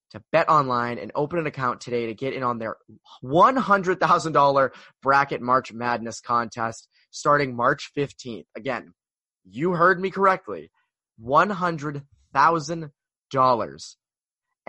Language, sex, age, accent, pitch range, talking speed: English, male, 20-39, American, 115-165 Hz, 110 wpm